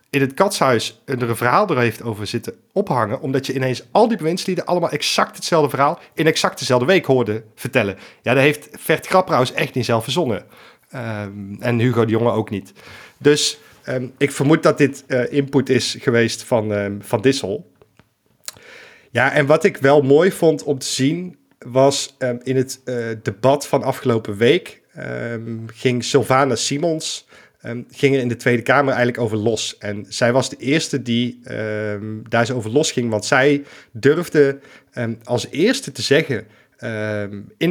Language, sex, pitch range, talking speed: Dutch, male, 115-140 Hz, 170 wpm